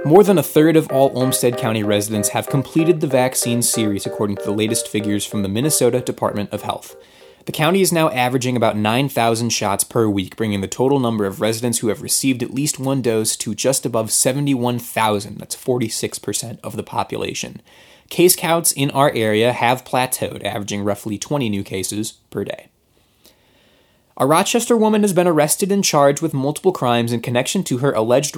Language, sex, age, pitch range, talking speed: English, male, 20-39, 110-150 Hz, 185 wpm